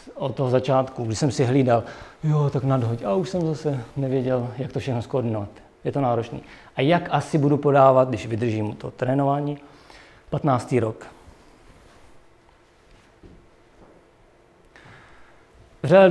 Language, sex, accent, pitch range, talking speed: Czech, male, native, 120-140 Hz, 125 wpm